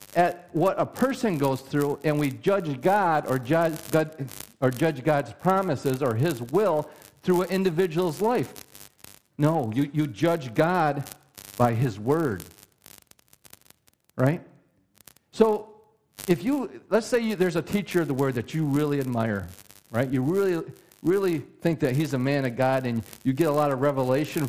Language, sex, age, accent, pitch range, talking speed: English, male, 50-69, American, 130-185 Hz, 165 wpm